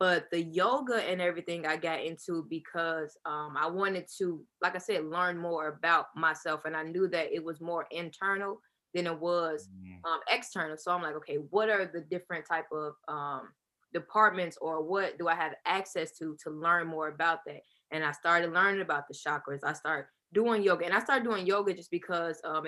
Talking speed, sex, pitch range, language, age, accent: 200 wpm, female, 155-180 Hz, English, 20-39, American